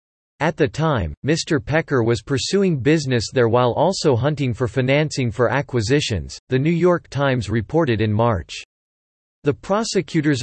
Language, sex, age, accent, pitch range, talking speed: English, male, 40-59, American, 115-150 Hz, 145 wpm